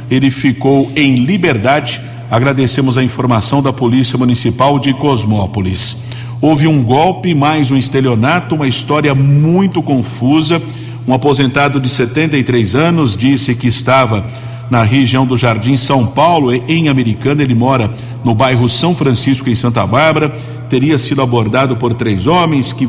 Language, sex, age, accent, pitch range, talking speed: Portuguese, male, 50-69, Brazilian, 120-145 Hz, 140 wpm